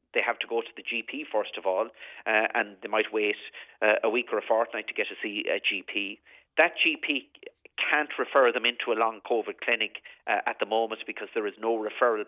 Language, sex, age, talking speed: English, male, 40-59, 225 wpm